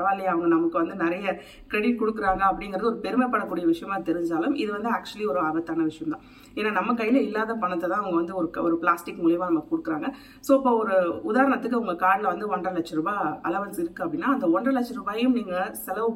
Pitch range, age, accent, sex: 175-245 Hz, 30-49, native, female